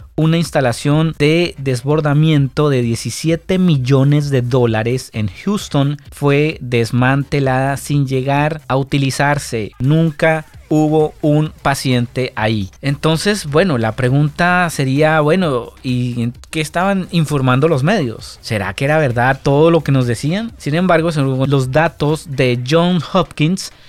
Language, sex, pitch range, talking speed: Spanish, male, 130-155 Hz, 130 wpm